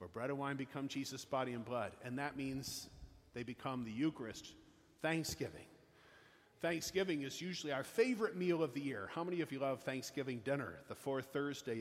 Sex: male